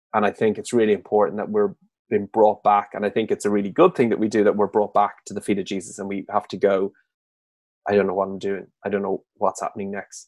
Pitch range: 100-115 Hz